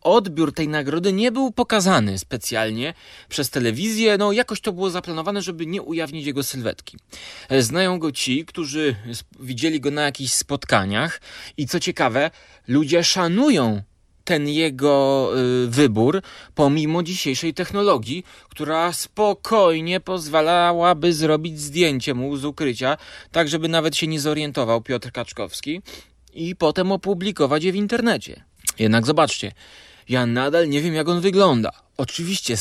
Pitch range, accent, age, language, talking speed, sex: 125-175 Hz, native, 30-49, Polish, 135 wpm, male